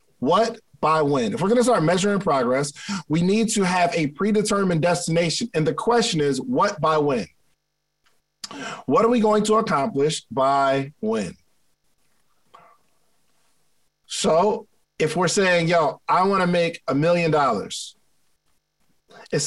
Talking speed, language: 135 wpm, English